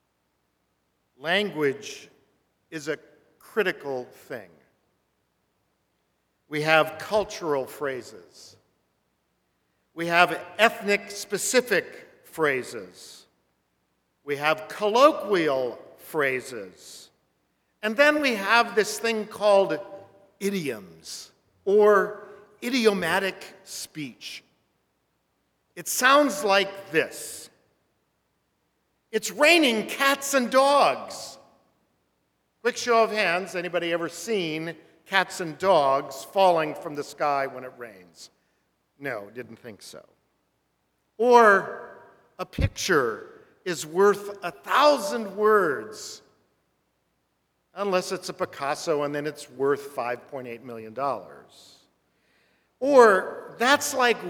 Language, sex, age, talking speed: English, male, 50-69, 85 wpm